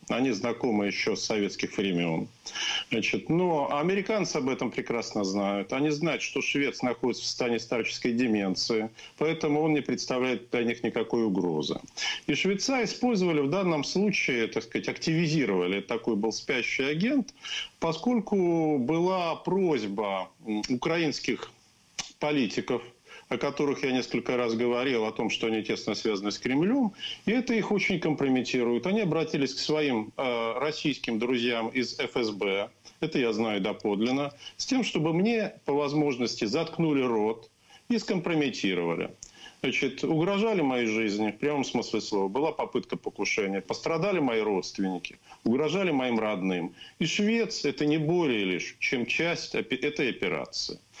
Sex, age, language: male, 50-69, Ukrainian